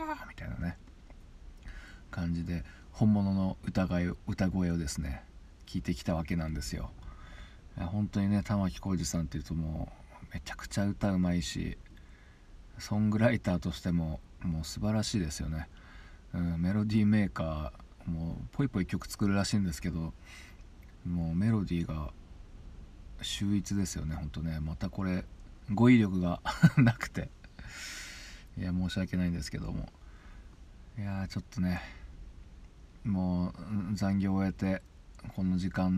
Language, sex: Japanese, male